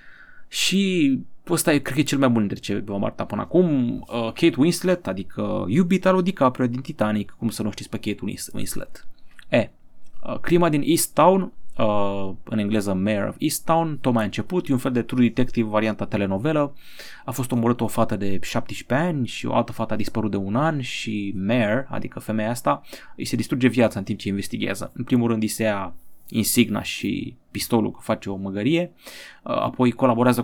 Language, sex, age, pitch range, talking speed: Romanian, male, 20-39, 105-140 Hz, 190 wpm